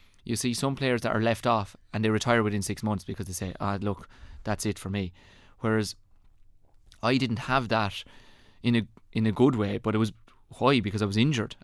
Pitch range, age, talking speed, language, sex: 100-120 Hz, 20-39, 220 wpm, English, male